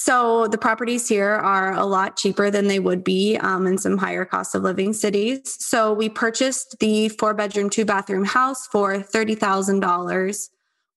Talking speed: 170 wpm